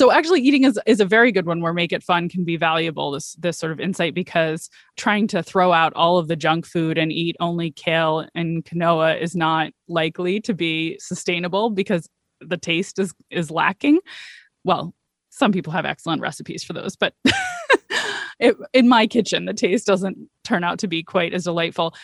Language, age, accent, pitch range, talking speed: English, 20-39, American, 170-210 Hz, 195 wpm